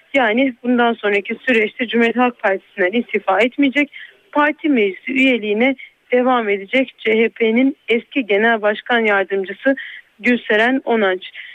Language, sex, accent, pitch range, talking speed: Turkish, female, native, 220-275 Hz, 110 wpm